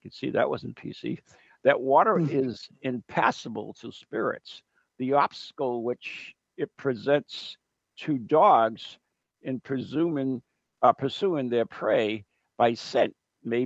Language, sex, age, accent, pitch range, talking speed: English, male, 60-79, American, 110-135 Hz, 115 wpm